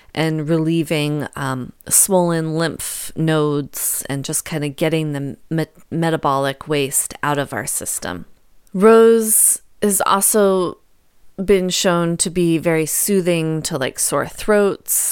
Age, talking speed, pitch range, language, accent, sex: 30-49, 125 wpm, 145-175 Hz, English, American, female